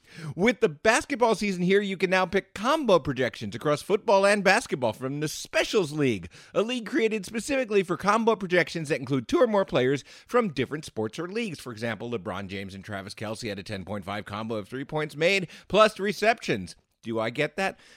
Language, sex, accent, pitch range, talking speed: English, male, American, 135-215 Hz, 195 wpm